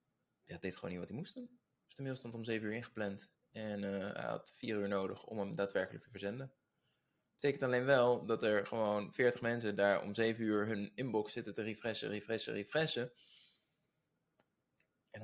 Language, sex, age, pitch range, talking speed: Dutch, male, 20-39, 100-125 Hz, 195 wpm